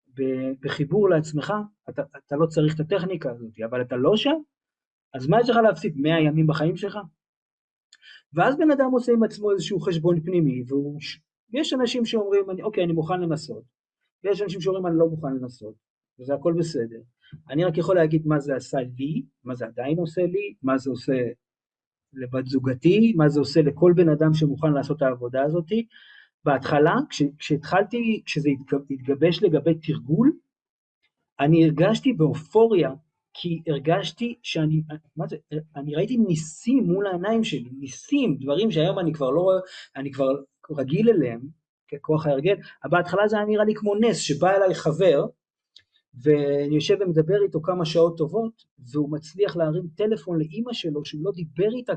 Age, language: 30-49, Hebrew